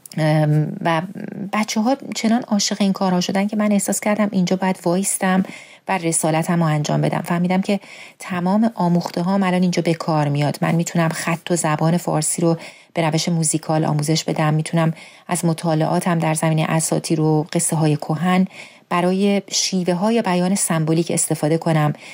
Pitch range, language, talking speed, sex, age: 165-200 Hz, Persian, 155 wpm, female, 30-49